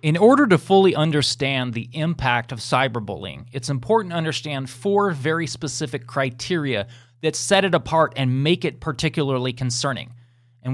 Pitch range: 120-155 Hz